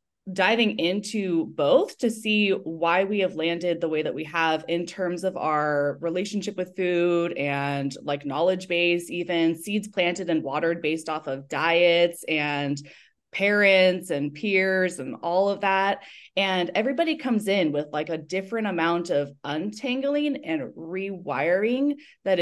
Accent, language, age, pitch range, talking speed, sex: American, English, 20-39, 165-200 Hz, 150 wpm, female